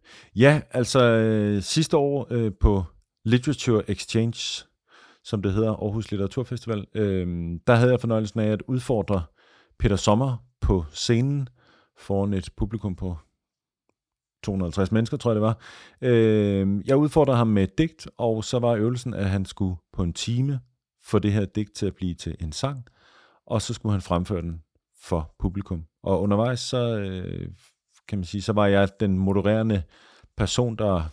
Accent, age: native, 40-59